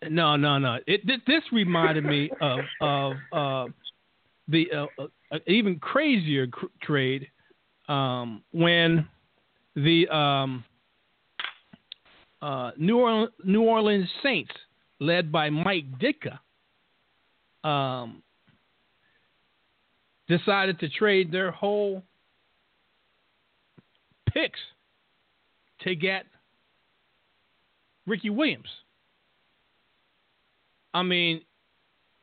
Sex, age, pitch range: male, 50-69, 140-200 Hz